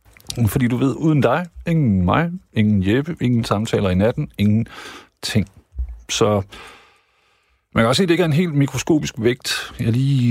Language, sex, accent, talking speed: Danish, male, native, 175 wpm